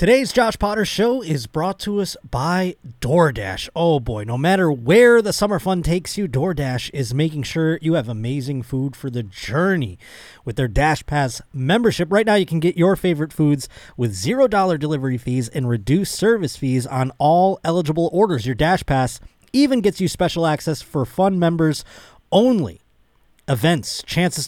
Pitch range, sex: 120-175 Hz, male